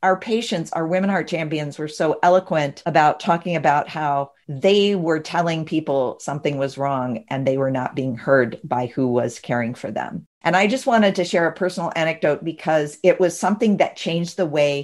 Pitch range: 150-195 Hz